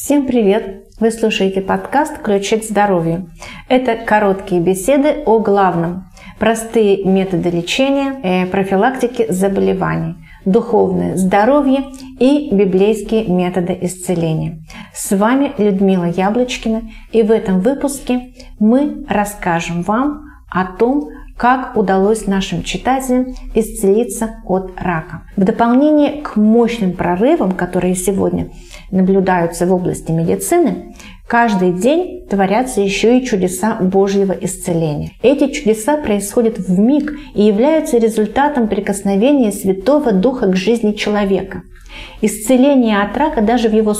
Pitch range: 190-250 Hz